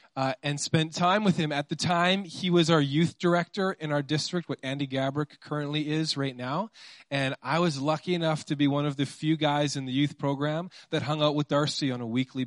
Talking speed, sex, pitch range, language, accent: 230 wpm, male, 125-160 Hz, English, American